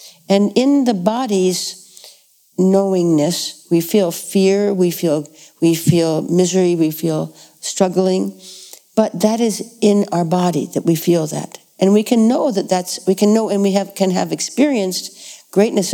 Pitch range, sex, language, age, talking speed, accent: 175-205 Hz, female, English, 60-79, 160 wpm, American